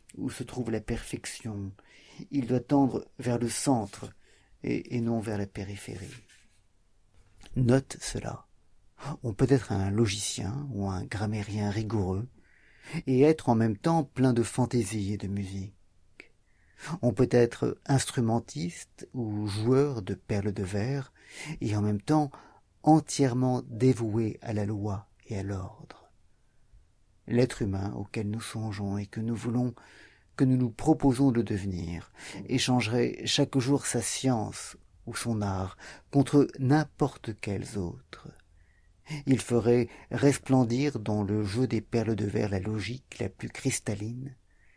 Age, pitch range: 50-69, 100-125 Hz